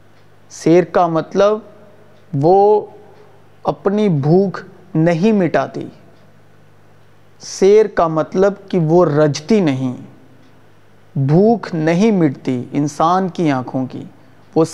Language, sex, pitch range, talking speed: Urdu, male, 130-195 Hz, 95 wpm